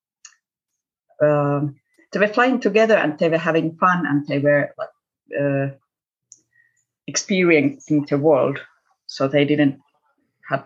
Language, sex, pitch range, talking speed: Finnish, female, 140-165 Hz, 120 wpm